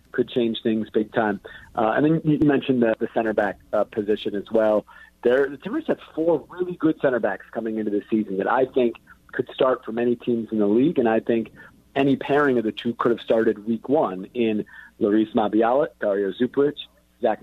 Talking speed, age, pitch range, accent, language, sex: 210 wpm, 40-59, 110-130 Hz, American, English, male